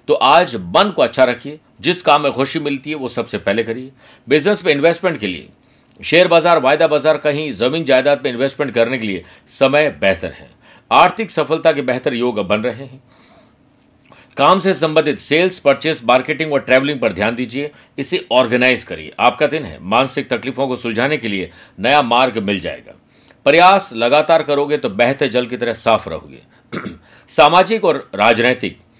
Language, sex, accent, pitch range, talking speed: Hindi, male, native, 120-160 Hz, 175 wpm